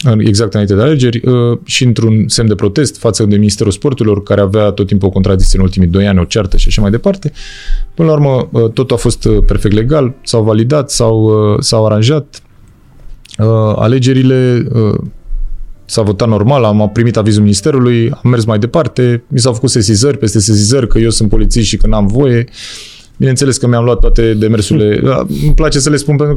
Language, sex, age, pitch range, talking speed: Romanian, male, 20-39, 105-130 Hz, 180 wpm